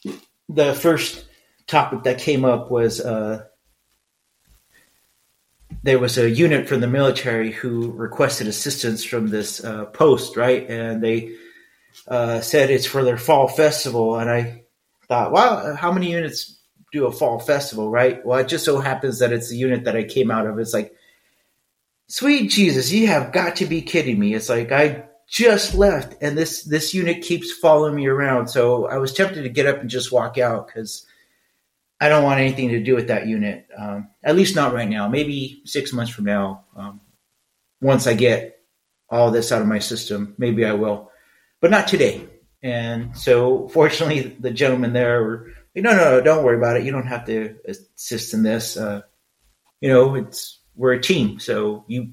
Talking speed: 185 wpm